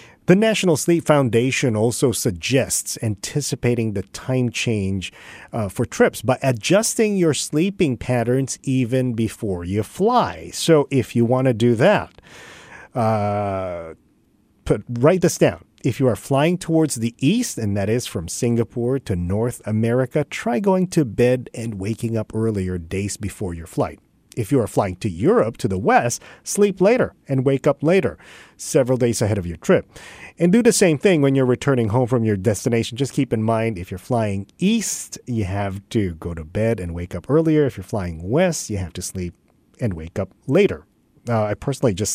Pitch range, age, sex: 105-140 Hz, 40-59, male